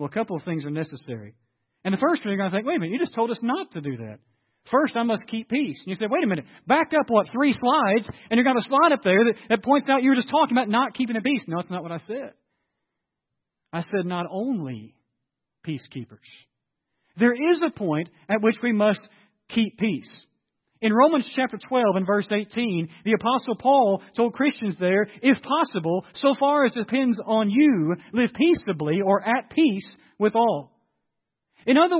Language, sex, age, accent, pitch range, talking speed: English, male, 40-59, American, 185-265 Hz, 215 wpm